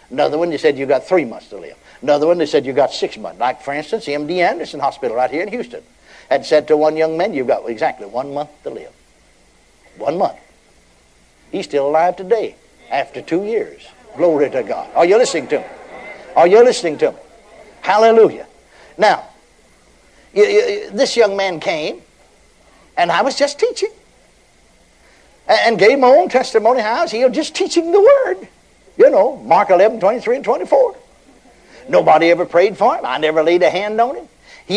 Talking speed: 185 wpm